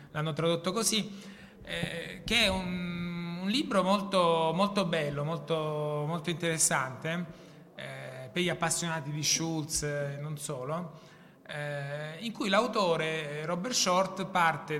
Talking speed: 125 wpm